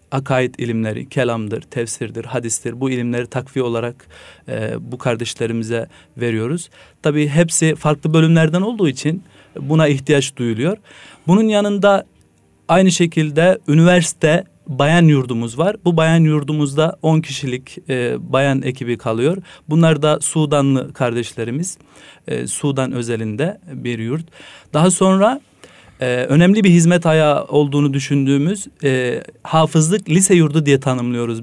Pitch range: 125-160 Hz